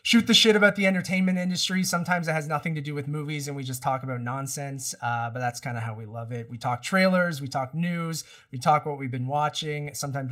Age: 30-49